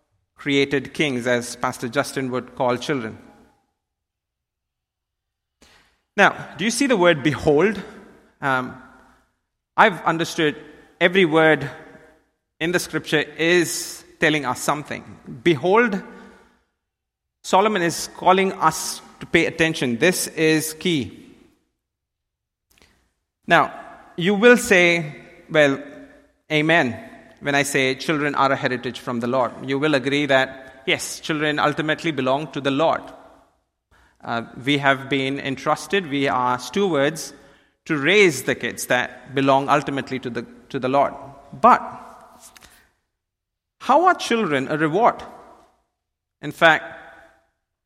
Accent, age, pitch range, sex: Indian, 30-49, 130-175 Hz, male